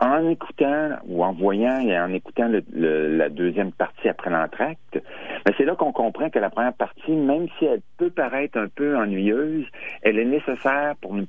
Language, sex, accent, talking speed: French, male, French, 195 wpm